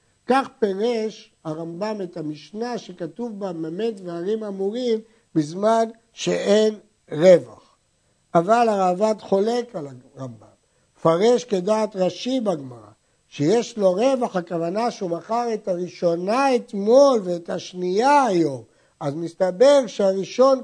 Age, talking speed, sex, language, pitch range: 60-79, 110 wpm, male, Hebrew, 165-235 Hz